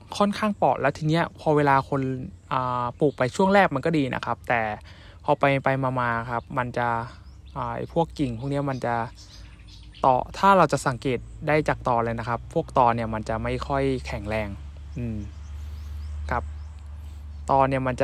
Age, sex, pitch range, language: 20-39, male, 105-135 Hz, Thai